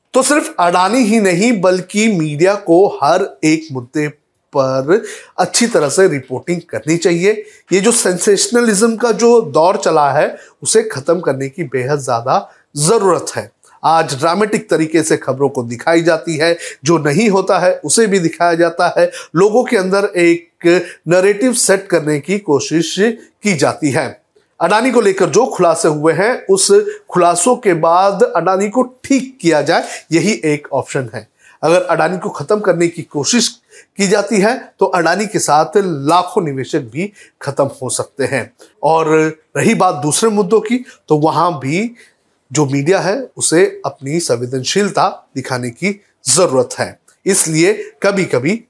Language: Hindi